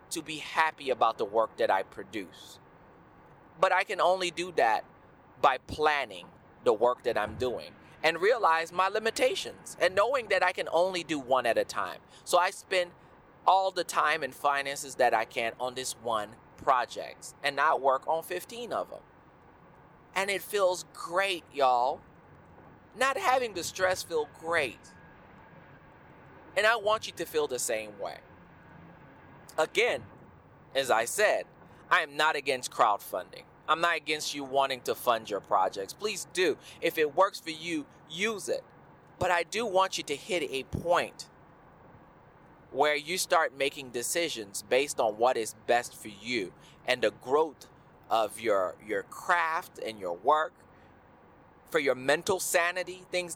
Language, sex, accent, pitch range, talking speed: English, male, American, 155-220 Hz, 160 wpm